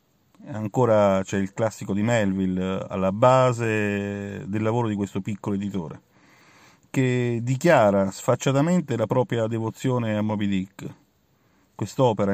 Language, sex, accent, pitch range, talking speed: Italian, male, native, 100-120 Hz, 115 wpm